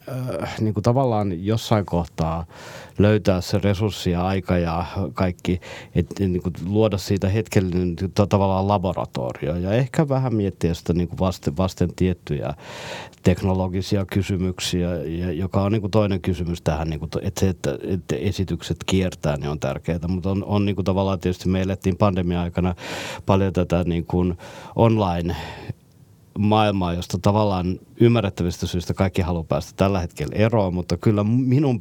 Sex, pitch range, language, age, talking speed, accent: male, 90-105 Hz, Finnish, 50-69, 140 wpm, native